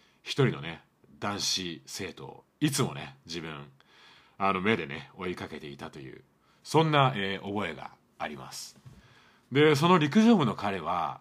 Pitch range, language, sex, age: 105-150 Hz, Japanese, male, 30-49